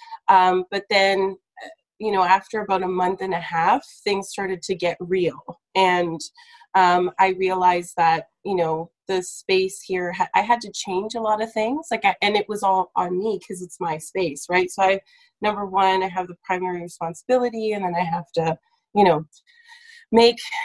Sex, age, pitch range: female, 20-39, 175-215 Hz